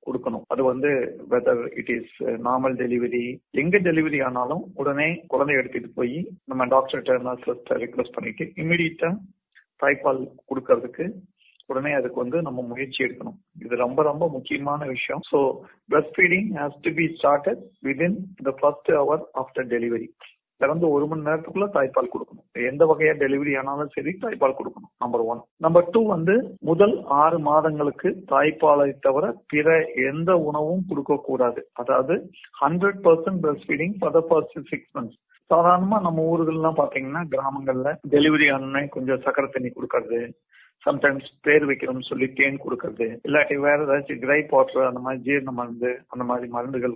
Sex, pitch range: male, 130-170 Hz